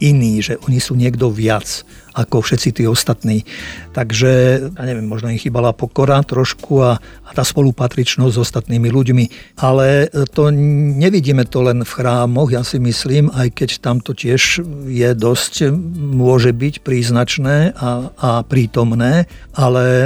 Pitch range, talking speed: 120-140 Hz, 145 wpm